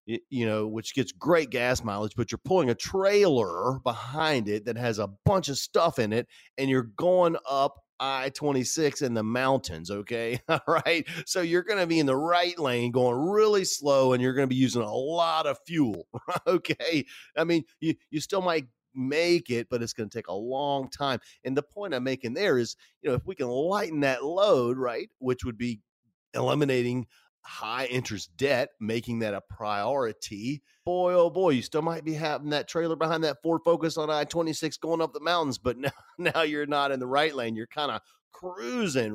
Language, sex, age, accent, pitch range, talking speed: English, male, 40-59, American, 115-160 Hz, 205 wpm